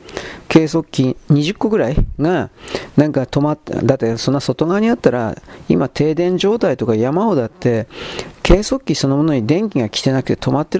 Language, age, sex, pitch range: Japanese, 40-59, male, 130-190 Hz